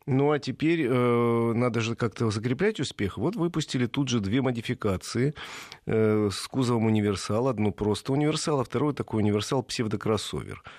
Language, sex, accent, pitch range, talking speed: Russian, male, native, 105-140 Hz, 150 wpm